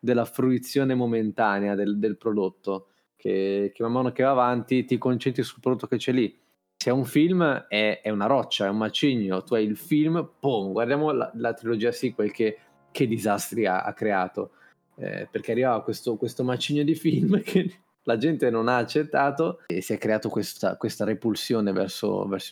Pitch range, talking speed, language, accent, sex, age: 115-155 Hz, 185 wpm, Italian, native, male, 20-39